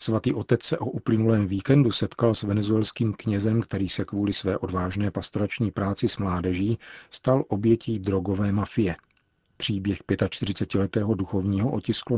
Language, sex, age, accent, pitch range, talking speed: Czech, male, 40-59, native, 95-110 Hz, 135 wpm